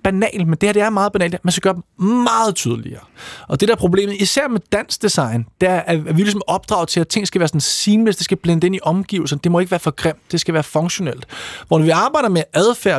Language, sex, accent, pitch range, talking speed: Danish, male, native, 155-205 Hz, 275 wpm